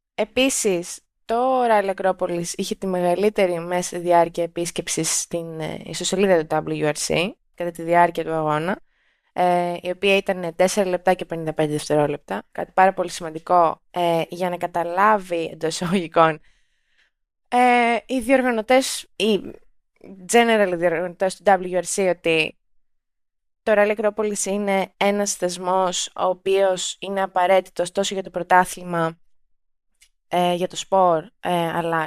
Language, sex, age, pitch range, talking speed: Greek, female, 20-39, 170-205 Hz, 120 wpm